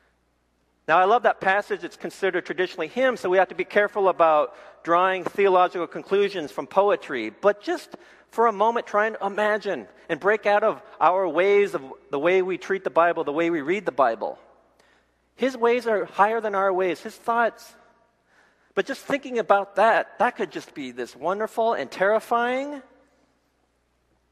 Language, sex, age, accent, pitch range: Korean, male, 40-59, American, 135-215 Hz